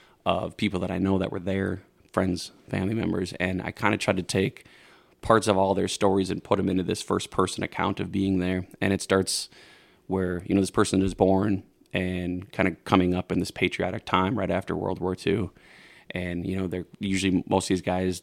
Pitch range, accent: 90-100 Hz, American